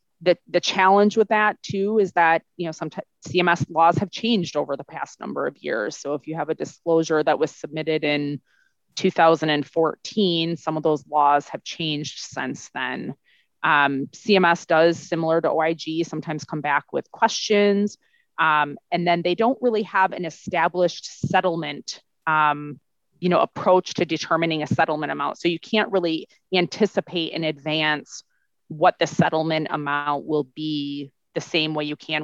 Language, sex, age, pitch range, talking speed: English, female, 30-49, 155-180 Hz, 165 wpm